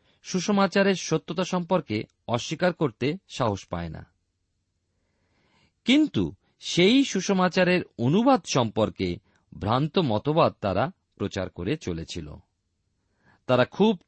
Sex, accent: male, native